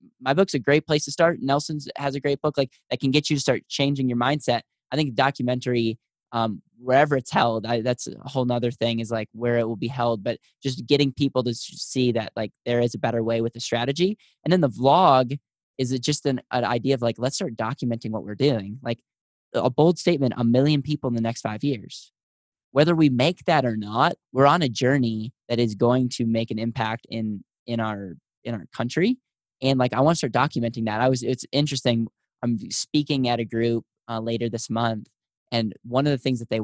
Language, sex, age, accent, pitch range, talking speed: English, male, 10-29, American, 115-140 Hz, 225 wpm